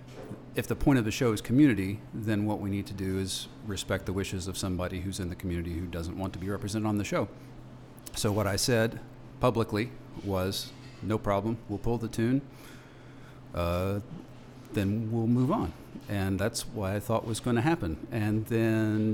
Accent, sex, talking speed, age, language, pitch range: American, male, 190 wpm, 40-59, English, 105-125 Hz